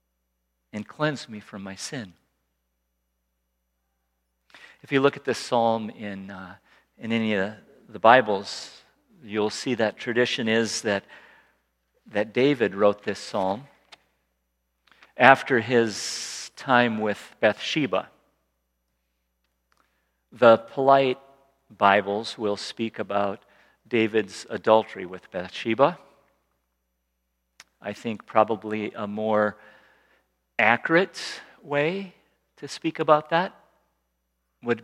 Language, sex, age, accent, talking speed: English, male, 50-69, American, 100 wpm